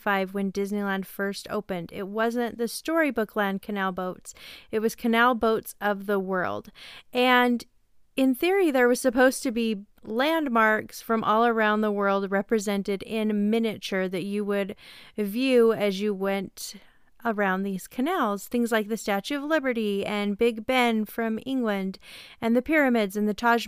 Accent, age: American, 30-49